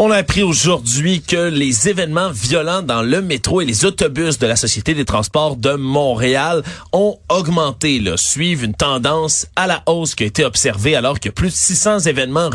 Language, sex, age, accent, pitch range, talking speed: French, male, 30-49, Canadian, 120-175 Hz, 190 wpm